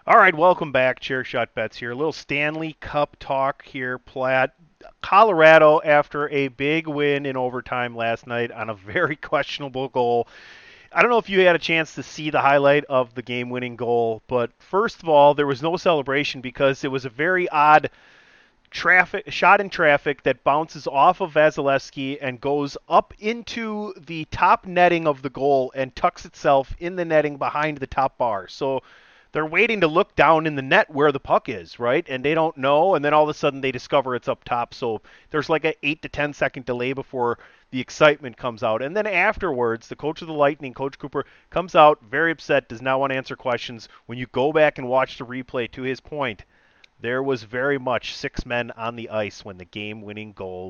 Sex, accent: male, American